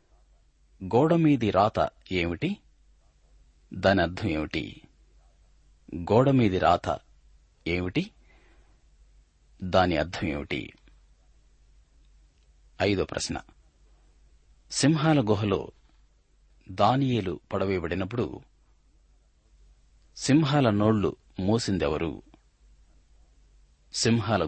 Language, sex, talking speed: Telugu, male, 50 wpm